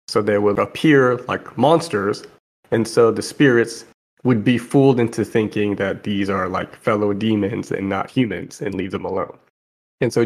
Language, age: English, 30-49